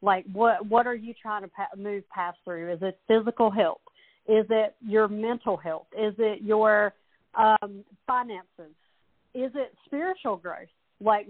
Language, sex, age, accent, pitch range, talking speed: English, female, 50-69, American, 200-245 Hz, 155 wpm